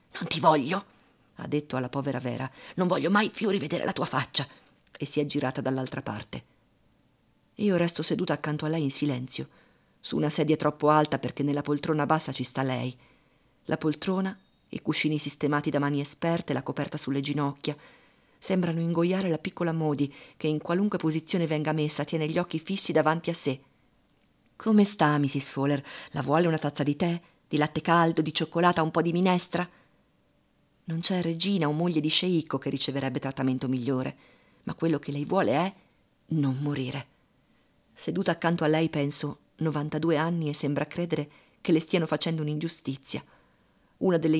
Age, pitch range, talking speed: 40-59, 145-170 Hz, 170 wpm